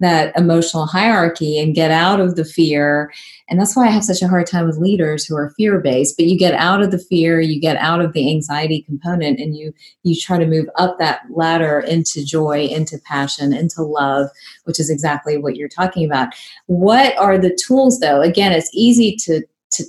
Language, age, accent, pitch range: English, 30-49, American, 155-185 Hz